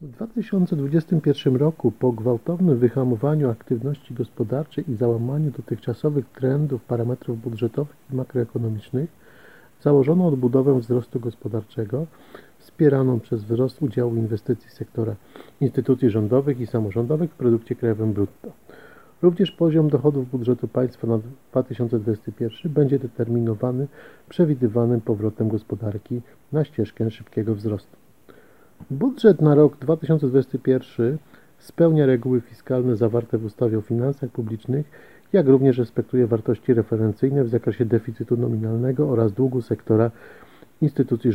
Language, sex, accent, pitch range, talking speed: Polish, male, native, 115-140 Hz, 110 wpm